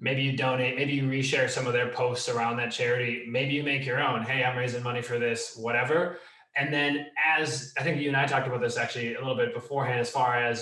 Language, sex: English, male